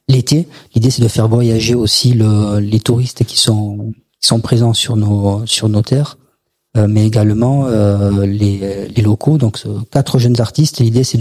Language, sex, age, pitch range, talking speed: French, male, 40-59, 110-130 Hz, 160 wpm